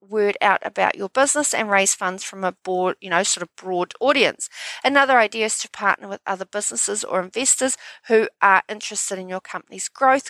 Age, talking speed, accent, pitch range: 40-59, 200 wpm, Australian, 185-255 Hz